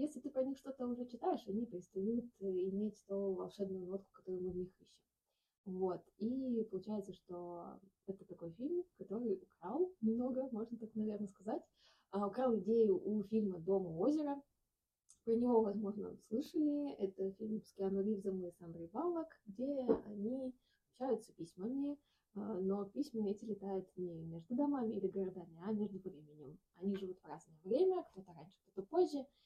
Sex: female